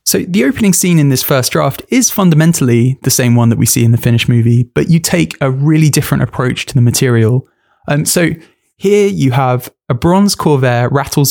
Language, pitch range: English, 125-155 Hz